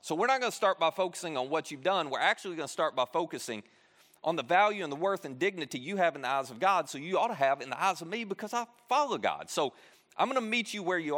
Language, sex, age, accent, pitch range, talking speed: English, male, 40-59, American, 145-210 Hz, 290 wpm